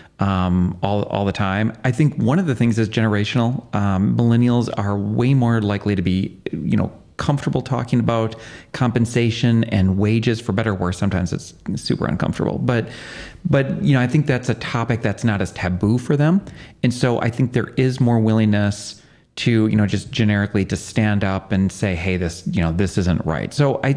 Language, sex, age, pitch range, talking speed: English, male, 40-59, 95-115 Hz, 200 wpm